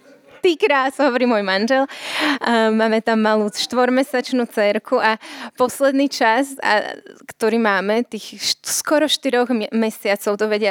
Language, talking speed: Czech, 105 wpm